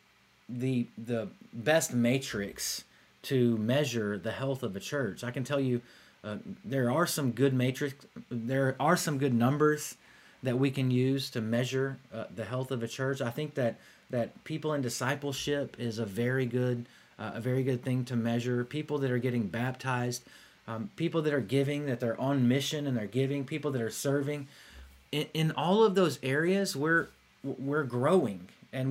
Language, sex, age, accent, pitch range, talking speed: English, male, 30-49, American, 125-155 Hz, 180 wpm